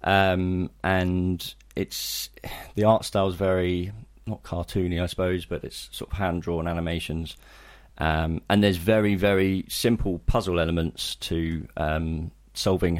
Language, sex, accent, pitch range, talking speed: English, male, British, 80-95 Hz, 135 wpm